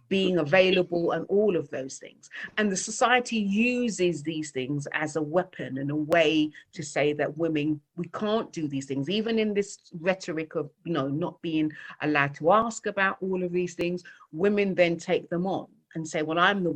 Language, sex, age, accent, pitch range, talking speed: English, female, 40-59, British, 150-195 Hz, 195 wpm